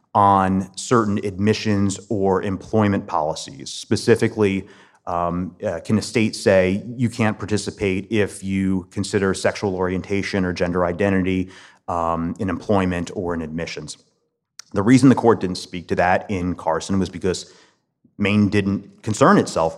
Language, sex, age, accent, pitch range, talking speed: English, male, 30-49, American, 90-110 Hz, 140 wpm